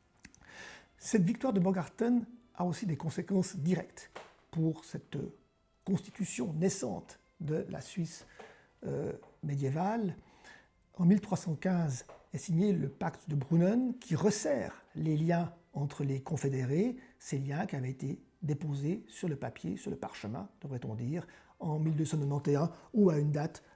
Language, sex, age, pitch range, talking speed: French, male, 60-79, 155-200 Hz, 135 wpm